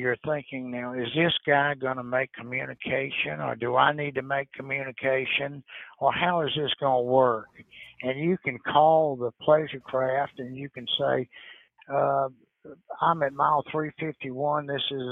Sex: male